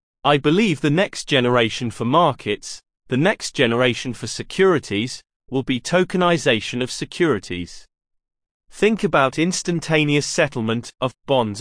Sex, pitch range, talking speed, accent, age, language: male, 115-160 Hz, 120 wpm, British, 30-49, English